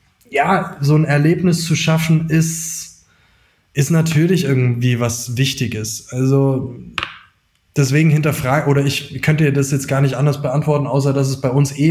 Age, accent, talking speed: 20-39, German, 155 wpm